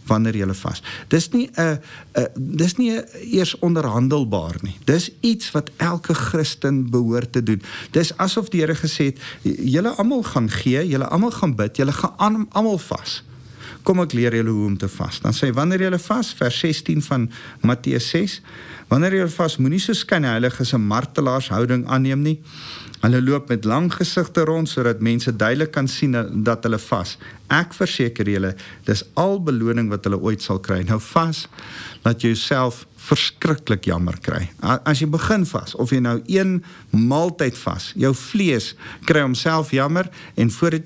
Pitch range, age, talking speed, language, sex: 115-165 Hz, 50-69, 180 wpm, English, male